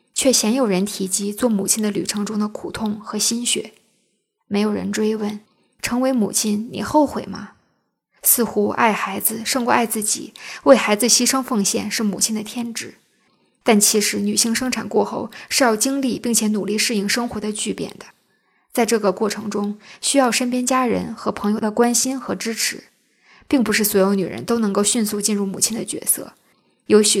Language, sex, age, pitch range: Chinese, female, 20-39, 205-240 Hz